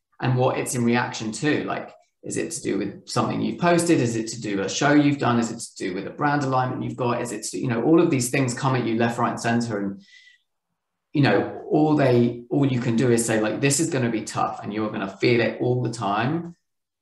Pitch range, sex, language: 105-125 Hz, male, English